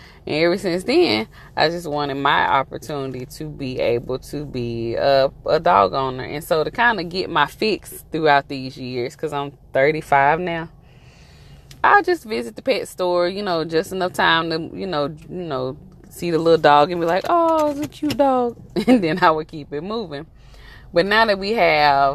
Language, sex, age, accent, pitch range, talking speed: English, female, 20-39, American, 135-170 Hz, 200 wpm